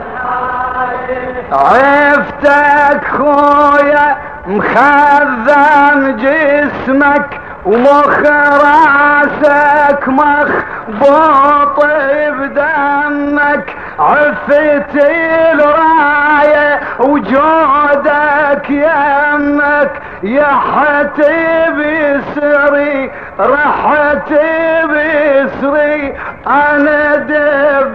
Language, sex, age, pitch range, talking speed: Arabic, male, 40-59, 260-295 Hz, 40 wpm